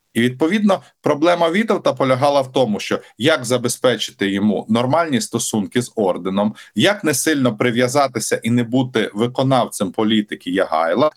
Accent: native